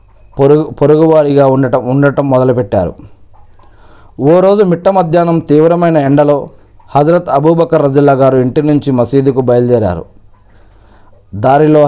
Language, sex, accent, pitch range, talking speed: Telugu, male, native, 105-155 Hz, 100 wpm